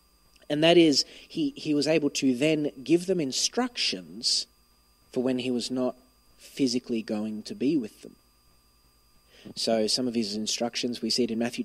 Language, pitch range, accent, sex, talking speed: English, 105-140 Hz, Australian, male, 170 wpm